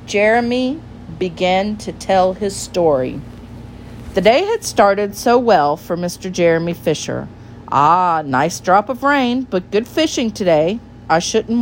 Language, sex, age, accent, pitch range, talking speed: English, female, 40-59, American, 155-245 Hz, 140 wpm